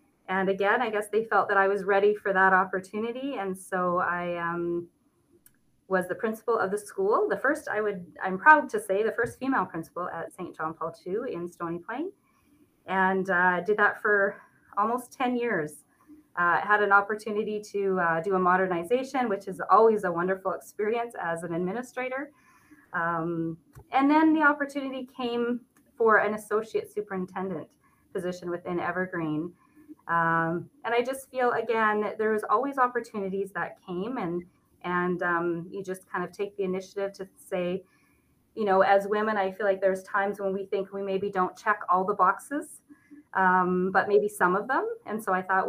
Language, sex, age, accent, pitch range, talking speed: English, female, 20-39, American, 185-240 Hz, 180 wpm